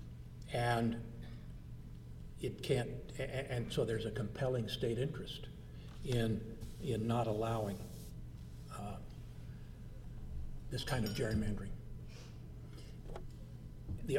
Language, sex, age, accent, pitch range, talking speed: English, male, 50-69, American, 115-145 Hz, 85 wpm